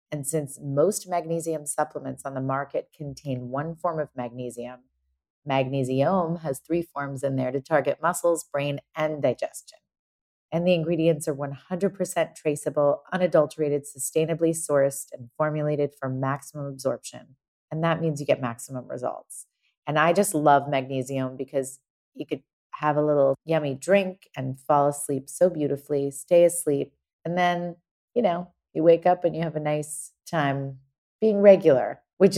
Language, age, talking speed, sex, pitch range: English, 30-49, 150 wpm, female, 135-170 Hz